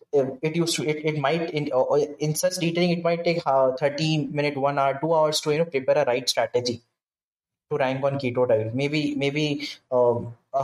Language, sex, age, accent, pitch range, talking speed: English, male, 20-39, Indian, 125-150 Hz, 205 wpm